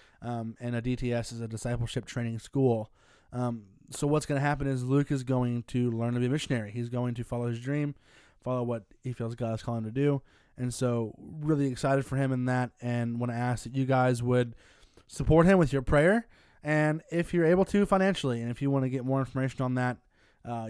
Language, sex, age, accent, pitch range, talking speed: English, male, 20-39, American, 120-145 Hz, 230 wpm